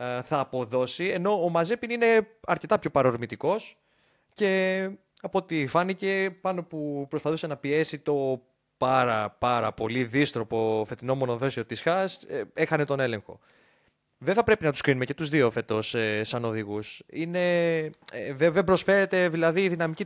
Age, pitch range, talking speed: 20-39, 120-155 Hz, 145 wpm